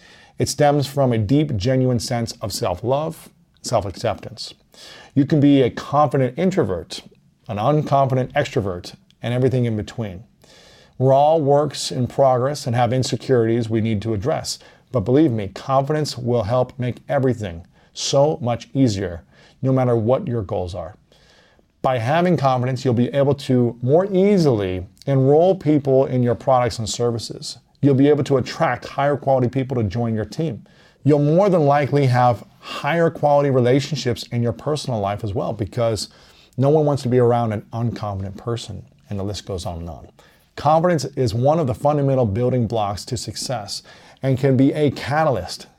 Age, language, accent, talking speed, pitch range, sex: 40-59, English, American, 165 wpm, 115-140 Hz, male